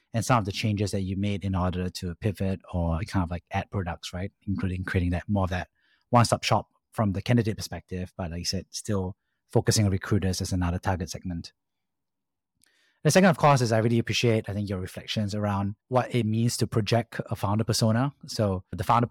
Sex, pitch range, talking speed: male, 95-120 Hz, 210 wpm